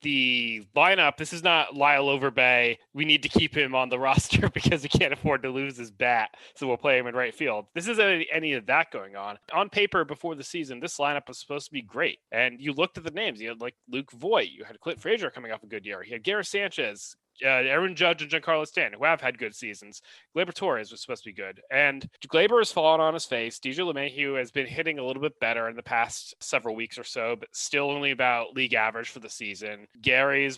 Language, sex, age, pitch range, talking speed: English, male, 30-49, 120-145 Hz, 245 wpm